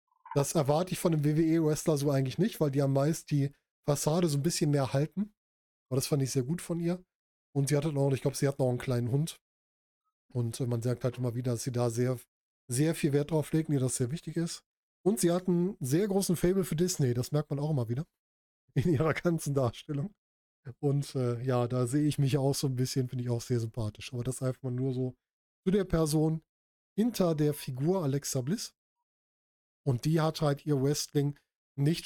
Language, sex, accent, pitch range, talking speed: German, male, German, 130-165 Hz, 220 wpm